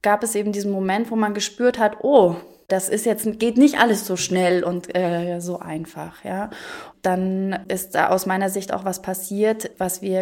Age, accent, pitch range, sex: 20-39, German, 185-215 Hz, female